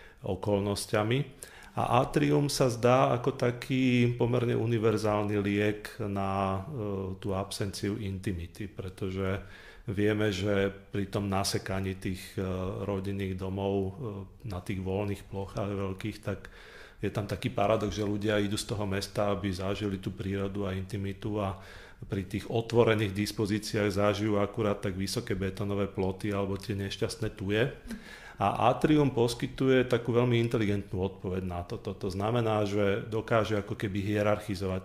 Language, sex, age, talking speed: Slovak, male, 40-59, 130 wpm